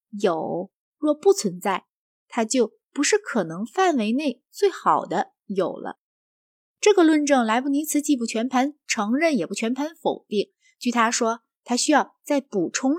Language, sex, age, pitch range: Chinese, female, 20-39, 205-290 Hz